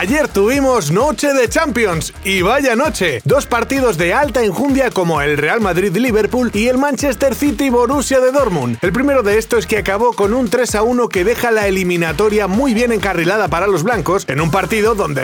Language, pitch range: Spanish, 180-235 Hz